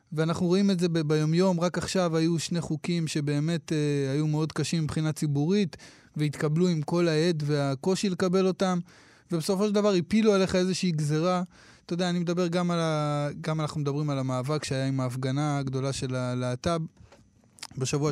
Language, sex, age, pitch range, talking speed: Hebrew, male, 20-39, 155-195 Hz, 160 wpm